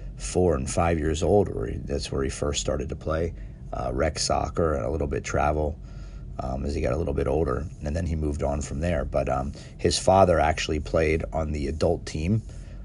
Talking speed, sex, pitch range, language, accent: 220 wpm, male, 75-95 Hz, English, American